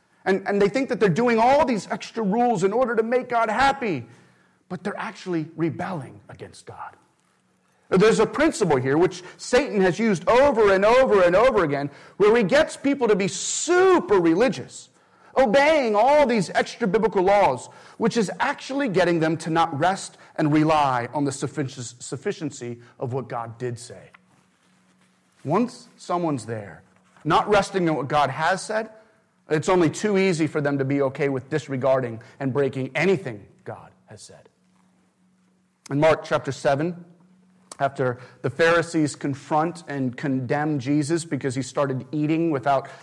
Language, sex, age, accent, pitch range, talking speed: English, male, 40-59, American, 140-200 Hz, 155 wpm